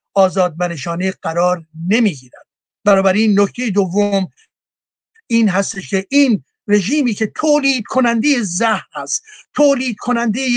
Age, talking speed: 60-79, 115 wpm